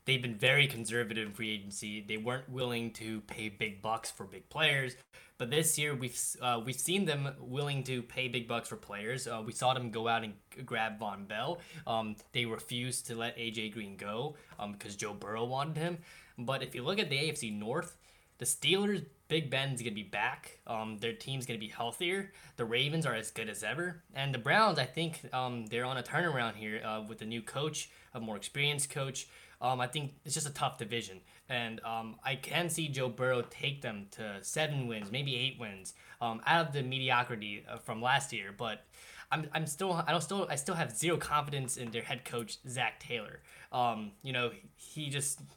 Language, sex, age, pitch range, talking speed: English, male, 10-29, 115-140 Hz, 210 wpm